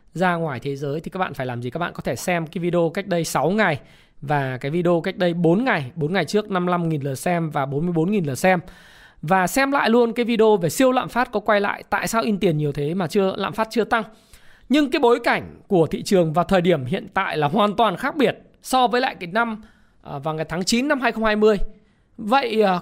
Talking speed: 240 wpm